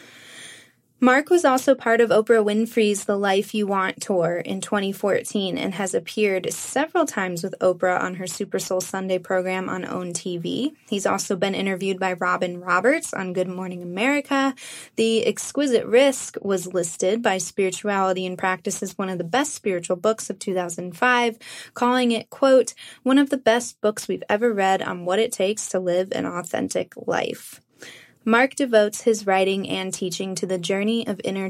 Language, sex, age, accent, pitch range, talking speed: English, female, 20-39, American, 190-240 Hz, 170 wpm